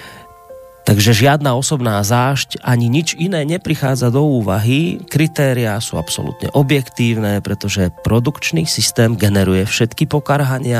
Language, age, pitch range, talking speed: Slovak, 30-49, 105-130 Hz, 110 wpm